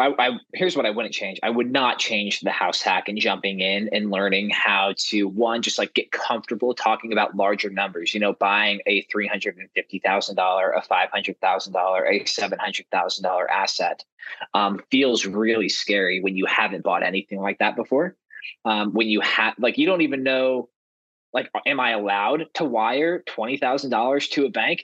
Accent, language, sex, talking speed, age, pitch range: American, English, male, 170 wpm, 20-39, 105-130 Hz